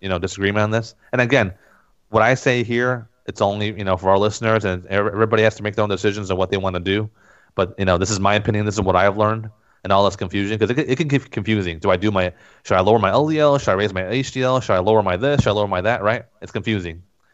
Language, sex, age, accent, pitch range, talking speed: English, male, 30-49, American, 100-120 Hz, 280 wpm